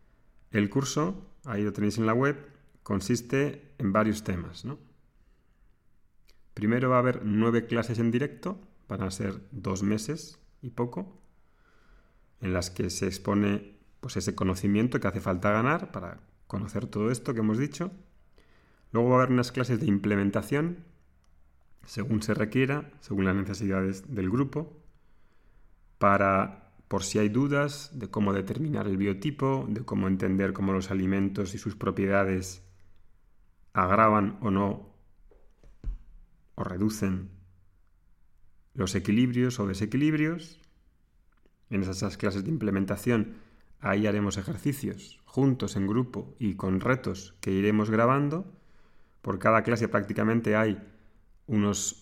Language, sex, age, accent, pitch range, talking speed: Spanish, male, 30-49, Spanish, 95-125 Hz, 130 wpm